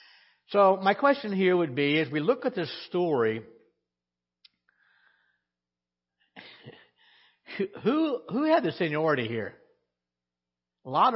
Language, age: English, 60-79